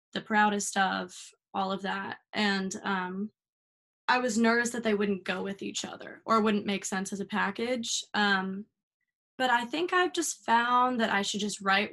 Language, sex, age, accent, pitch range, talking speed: English, female, 20-39, American, 190-220 Hz, 185 wpm